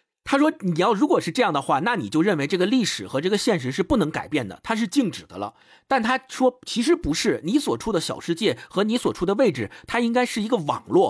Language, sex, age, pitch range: Chinese, male, 50-69, 135-205 Hz